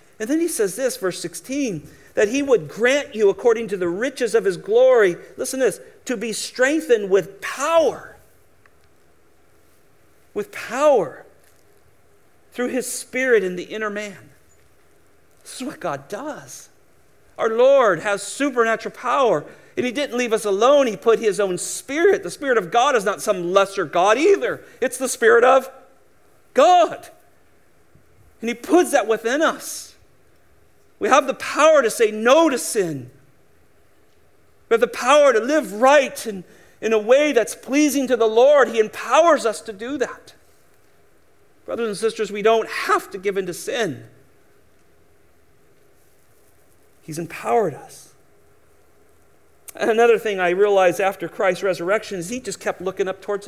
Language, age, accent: English, 50-69, American